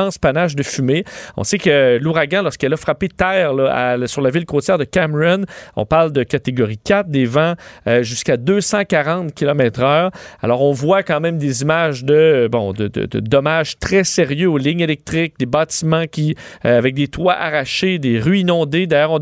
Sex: male